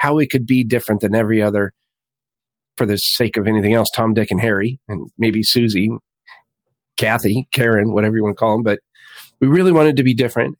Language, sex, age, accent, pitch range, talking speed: English, male, 40-59, American, 110-135 Hz, 205 wpm